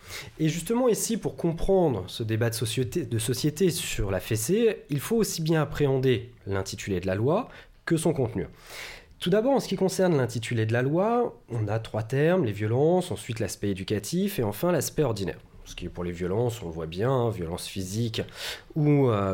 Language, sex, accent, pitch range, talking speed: French, male, French, 110-170 Hz, 195 wpm